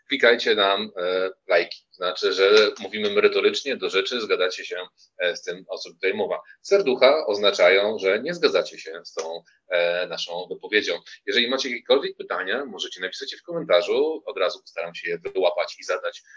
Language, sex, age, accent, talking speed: Polish, male, 30-49, native, 170 wpm